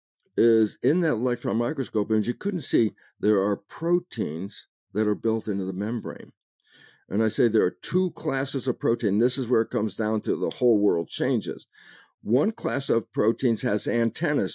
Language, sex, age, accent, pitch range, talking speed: English, male, 50-69, American, 110-145 Hz, 180 wpm